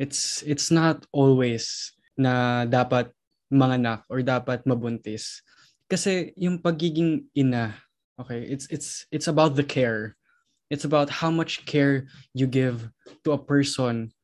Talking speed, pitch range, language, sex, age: 135 wpm, 120-155 Hz, Filipino, male, 20-39